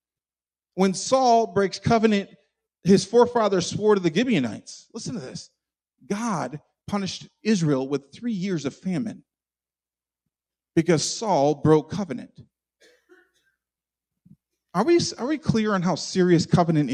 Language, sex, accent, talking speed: English, male, American, 115 wpm